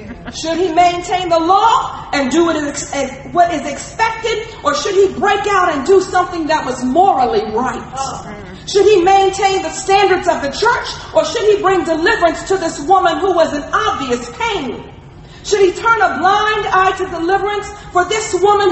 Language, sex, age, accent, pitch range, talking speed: English, female, 40-59, American, 330-400 Hz, 175 wpm